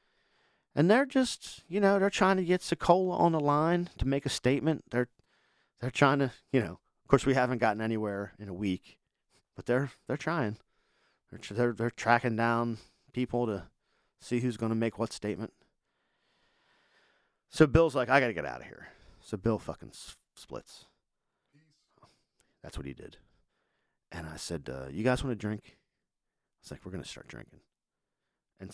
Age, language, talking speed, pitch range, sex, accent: 40-59, English, 185 wpm, 105-140 Hz, male, American